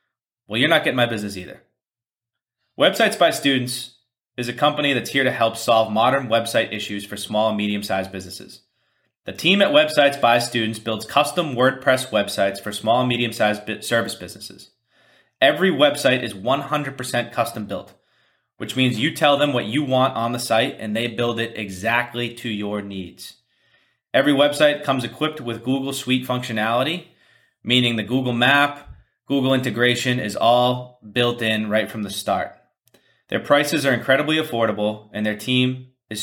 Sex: male